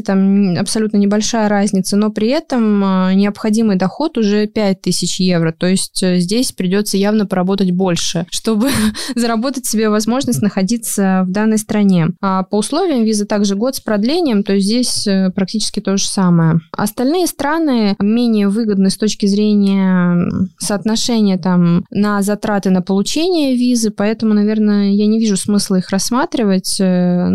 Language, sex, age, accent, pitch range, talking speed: Russian, female, 20-39, native, 185-215 Hz, 145 wpm